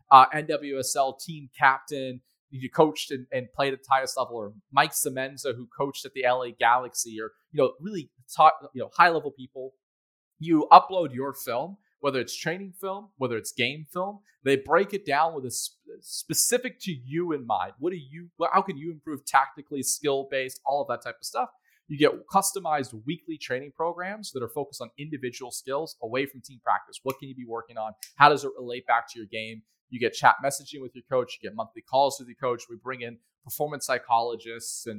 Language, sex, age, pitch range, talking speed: English, male, 30-49, 125-155 Hz, 210 wpm